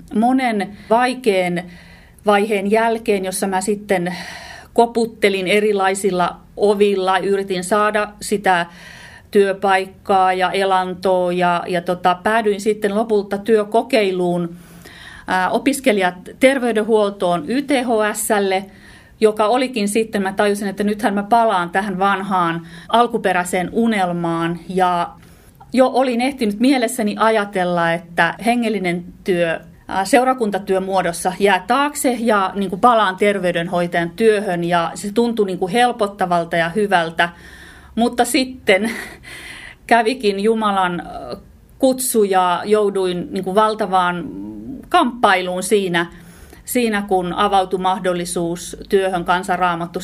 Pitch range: 180-220 Hz